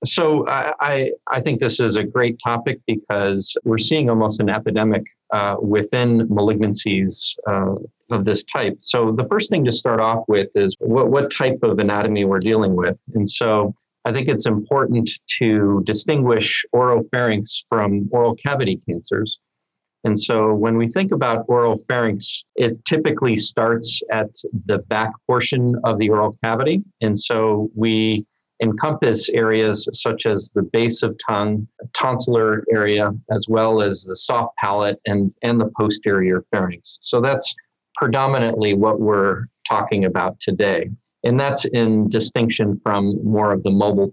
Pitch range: 105-120 Hz